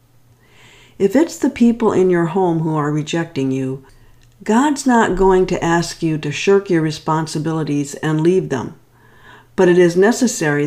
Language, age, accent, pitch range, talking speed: English, 60-79, American, 145-195 Hz, 155 wpm